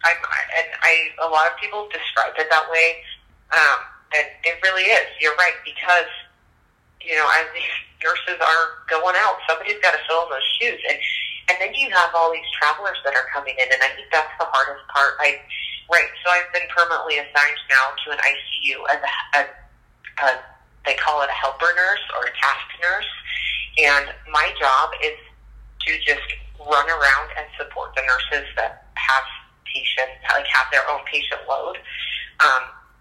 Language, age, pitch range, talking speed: English, 30-49, 135-175 Hz, 175 wpm